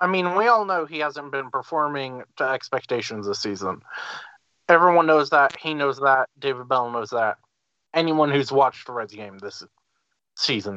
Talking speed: 175 wpm